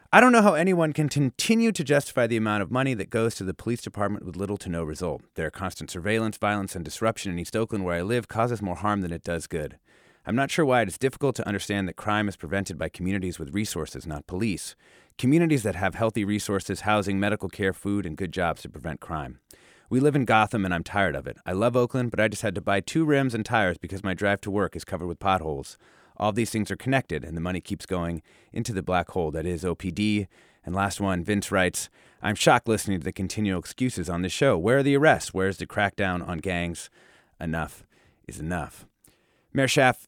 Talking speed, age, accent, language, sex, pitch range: 230 wpm, 30-49, American, English, male, 90-120 Hz